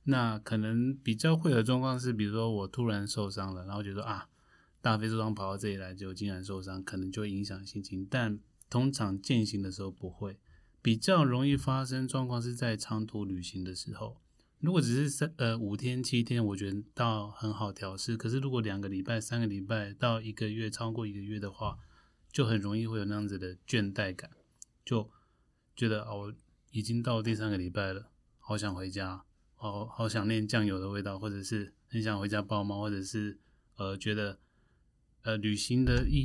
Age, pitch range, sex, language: 20-39, 100-120 Hz, male, Chinese